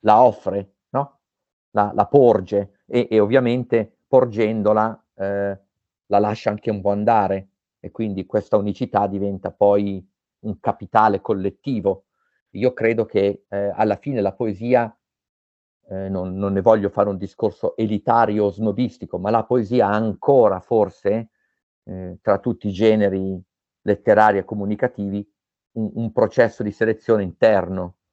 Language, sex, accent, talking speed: Italian, male, native, 135 wpm